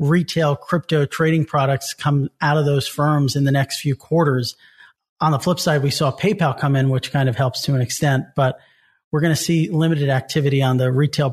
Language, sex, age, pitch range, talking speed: English, male, 40-59, 135-155 Hz, 210 wpm